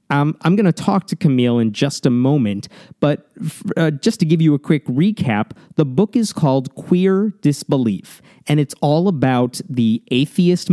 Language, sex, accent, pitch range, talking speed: English, male, American, 120-160 Hz, 180 wpm